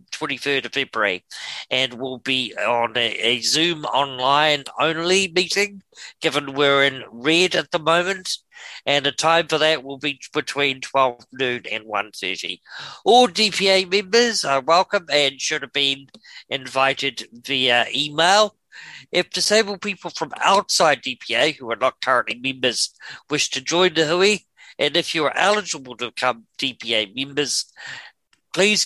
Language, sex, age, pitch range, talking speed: English, male, 50-69, 130-175 Hz, 150 wpm